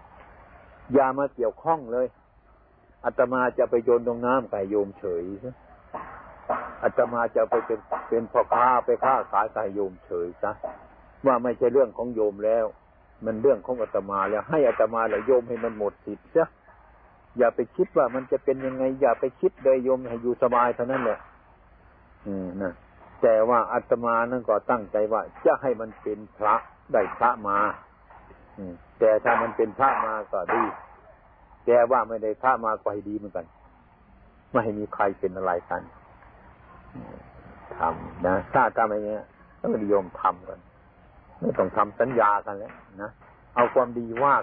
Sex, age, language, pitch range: male, 60-79, Thai, 105-130 Hz